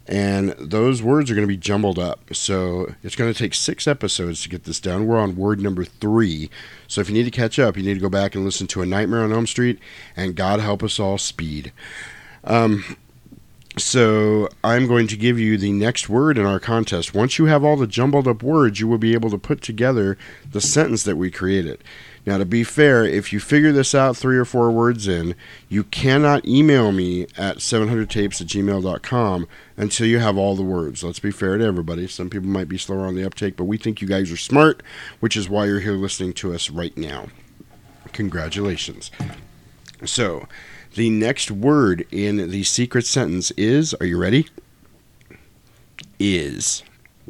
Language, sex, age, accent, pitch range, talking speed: English, male, 40-59, American, 95-115 Hz, 200 wpm